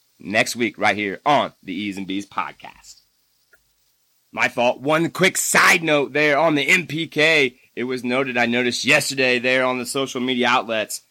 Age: 30-49